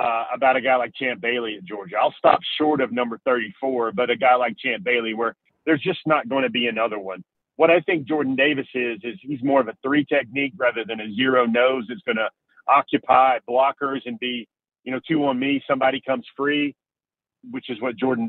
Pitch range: 120-140 Hz